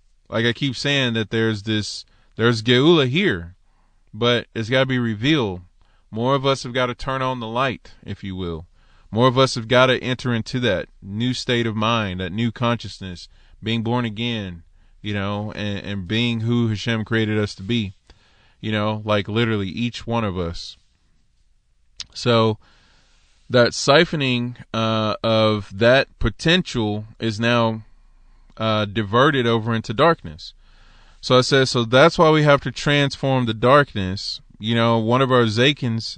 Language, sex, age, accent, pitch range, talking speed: English, male, 20-39, American, 105-125 Hz, 165 wpm